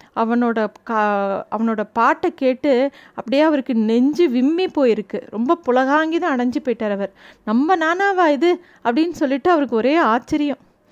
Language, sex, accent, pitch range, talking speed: Tamil, female, native, 230-295 Hz, 115 wpm